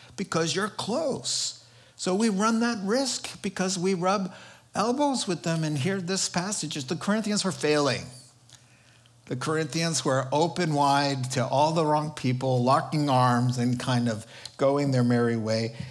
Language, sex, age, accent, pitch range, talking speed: English, male, 50-69, American, 125-185 Hz, 155 wpm